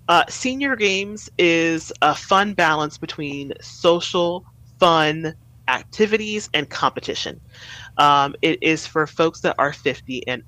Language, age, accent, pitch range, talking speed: English, 30-49, American, 135-180 Hz, 125 wpm